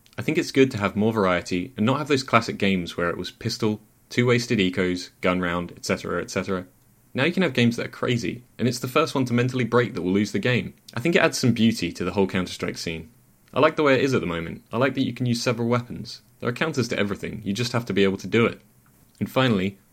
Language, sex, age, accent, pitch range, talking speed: English, male, 30-49, British, 95-130 Hz, 270 wpm